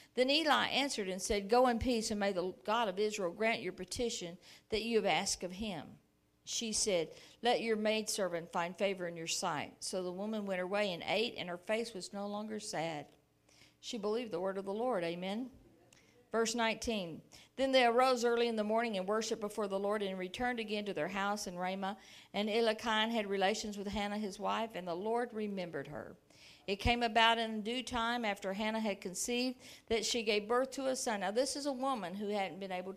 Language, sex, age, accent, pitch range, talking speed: English, female, 50-69, American, 190-230 Hz, 210 wpm